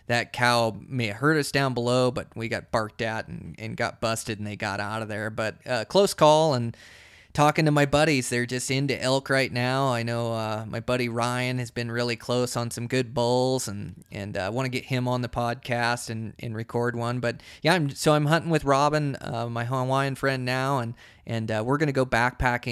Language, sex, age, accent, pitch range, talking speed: English, male, 20-39, American, 115-135 Hz, 235 wpm